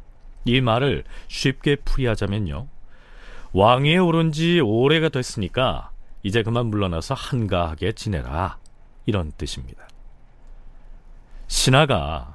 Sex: male